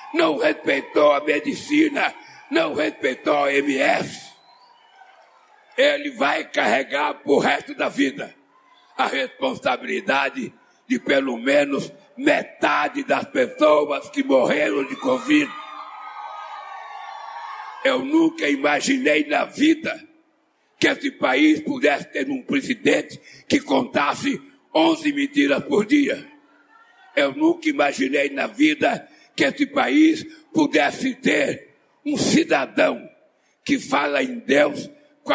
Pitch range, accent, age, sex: 260-320 Hz, Brazilian, 60-79, male